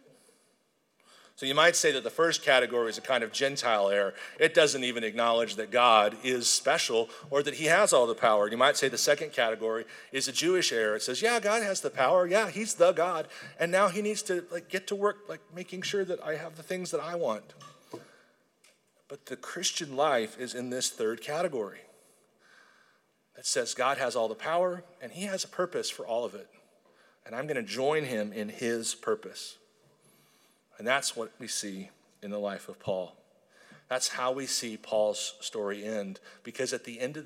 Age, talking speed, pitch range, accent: 40-59, 205 wpm, 110-165 Hz, American